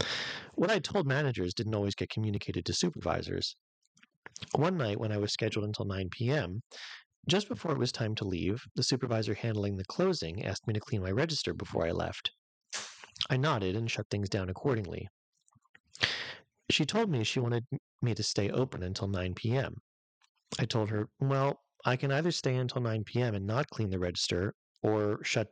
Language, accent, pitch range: English, American, 100-130 Hz